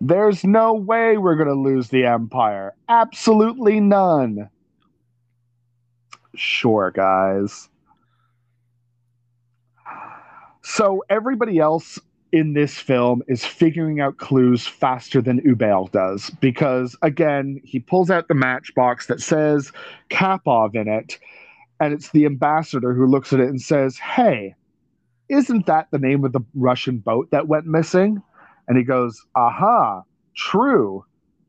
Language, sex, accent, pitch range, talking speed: English, male, American, 120-160 Hz, 125 wpm